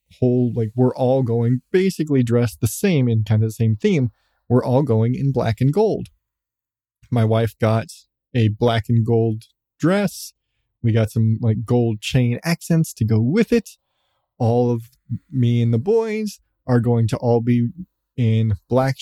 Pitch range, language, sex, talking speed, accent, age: 110-140 Hz, English, male, 170 wpm, American, 20-39